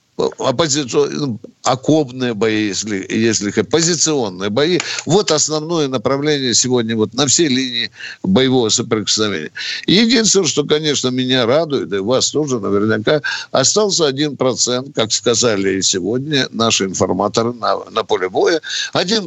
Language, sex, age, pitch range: Russian, male, 60-79, 115-165 Hz